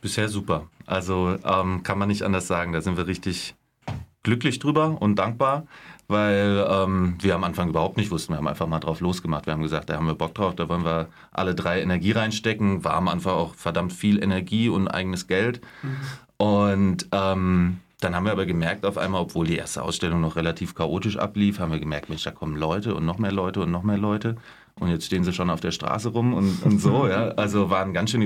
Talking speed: 220 wpm